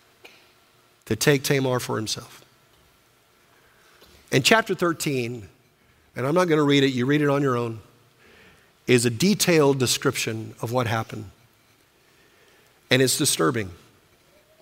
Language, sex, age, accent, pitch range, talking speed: English, male, 50-69, American, 125-170 Hz, 125 wpm